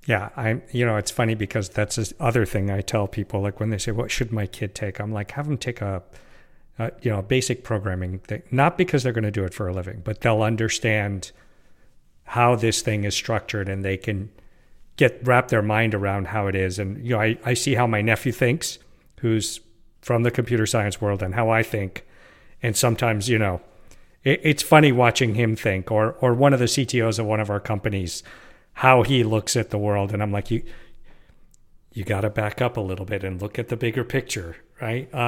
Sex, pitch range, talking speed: male, 105-125 Hz, 220 wpm